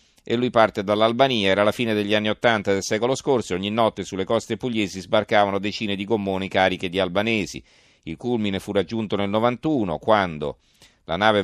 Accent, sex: native, male